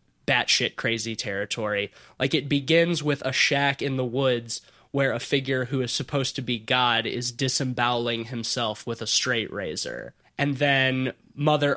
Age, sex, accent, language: 20-39, male, American, English